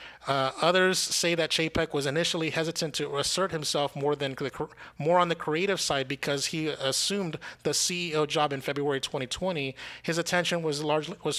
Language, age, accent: English, 30-49, American